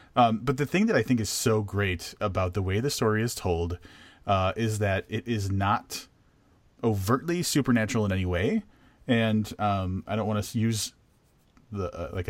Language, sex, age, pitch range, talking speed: English, male, 30-49, 90-110 Hz, 180 wpm